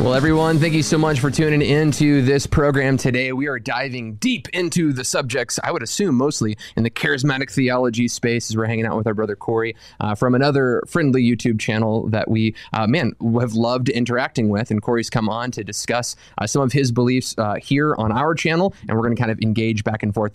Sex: male